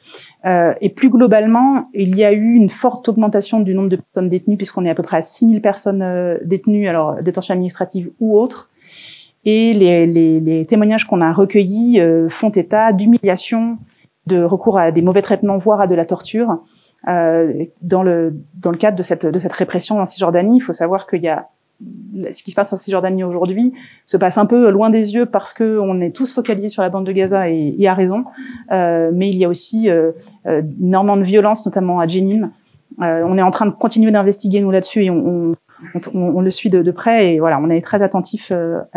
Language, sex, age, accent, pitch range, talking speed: French, female, 30-49, French, 175-215 Hz, 215 wpm